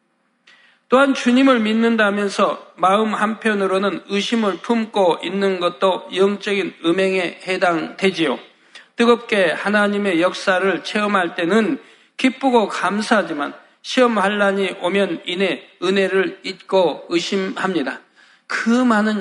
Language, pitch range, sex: Korean, 180-235 Hz, male